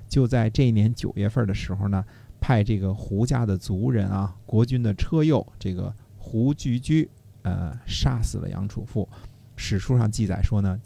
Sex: male